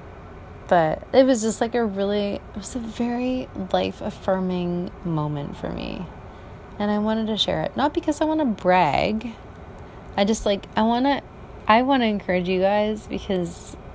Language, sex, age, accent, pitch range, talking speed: English, female, 20-39, American, 165-225 Hz, 175 wpm